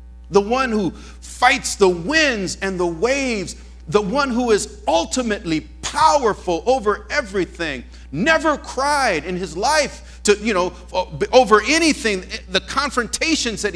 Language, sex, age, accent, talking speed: English, male, 50-69, American, 130 wpm